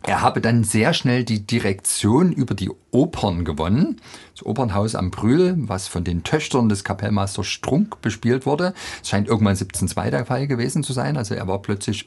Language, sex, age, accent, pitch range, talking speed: German, male, 40-59, German, 95-120 Hz, 185 wpm